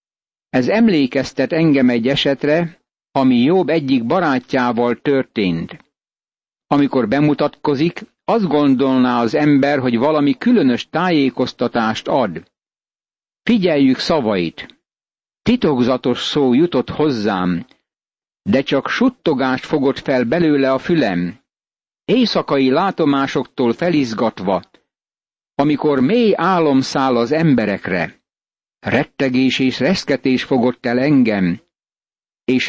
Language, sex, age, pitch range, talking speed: Hungarian, male, 60-79, 130-155 Hz, 90 wpm